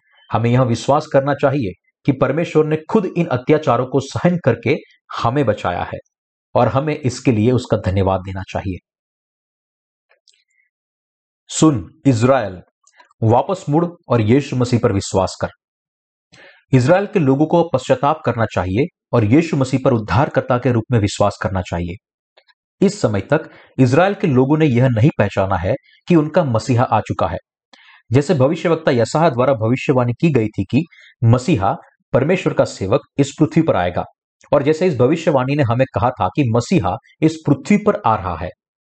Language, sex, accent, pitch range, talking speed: Hindi, male, native, 110-155 Hz, 160 wpm